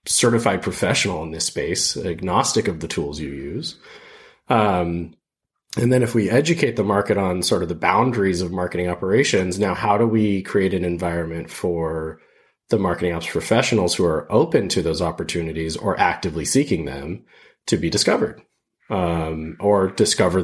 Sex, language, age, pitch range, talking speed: male, English, 30-49, 80-95 Hz, 160 wpm